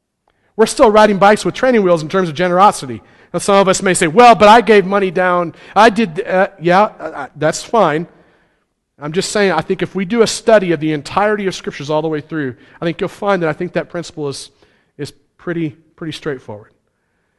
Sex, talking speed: male, 215 wpm